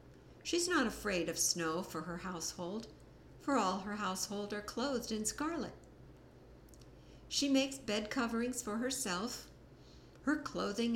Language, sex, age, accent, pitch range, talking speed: English, female, 60-79, American, 180-235 Hz, 130 wpm